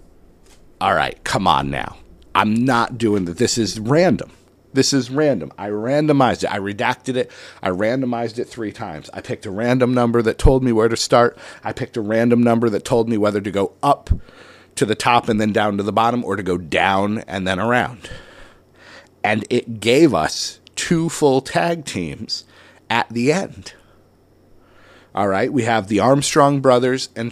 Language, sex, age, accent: English, male, 40-59, American